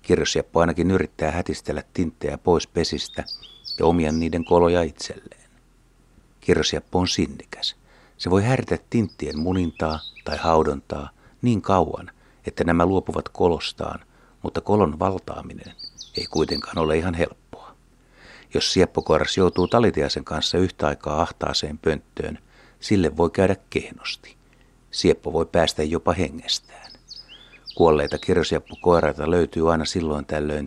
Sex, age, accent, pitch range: male, 60-79, native, 80-95 Hz